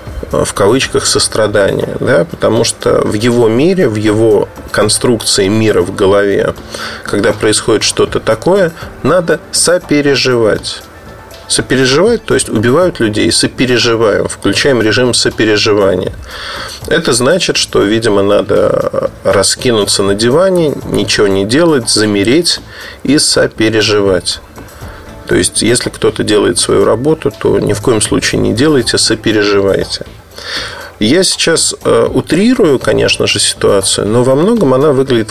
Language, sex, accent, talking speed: Russian, male, native, 120 wpm